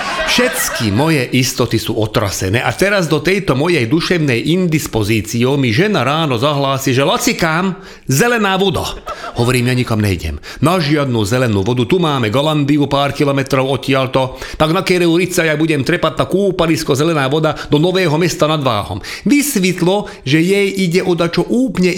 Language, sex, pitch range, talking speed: Slovak, male, 135-185 Hz, 155 wpm